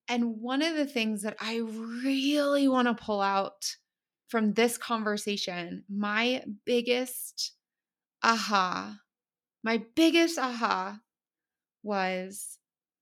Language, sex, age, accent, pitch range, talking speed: English, female, 20-39, American, 200-245 Hz, 110 wpm